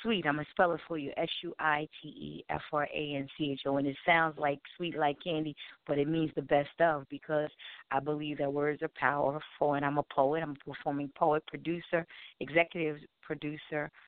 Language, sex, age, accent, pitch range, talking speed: English, female, 40-59, American, 150-170 Hz, 170 wpm